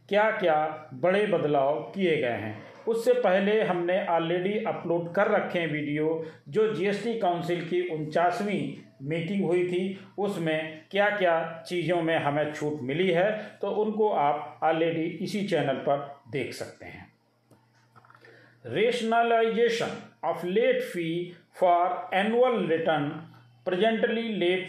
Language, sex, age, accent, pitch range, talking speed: Hindi, male, 40-59, native, 155-205 Hz, 125 wpm